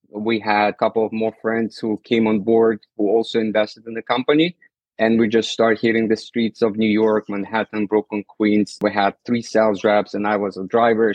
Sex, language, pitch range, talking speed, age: male, English, 105-115 Hz, 215 wpm, 20-39